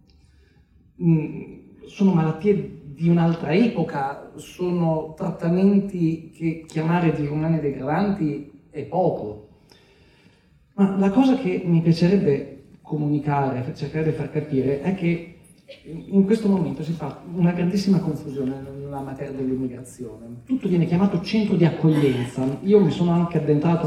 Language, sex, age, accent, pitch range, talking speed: Italian, male, 40-59, native, 140-175 Hz, 125 wpm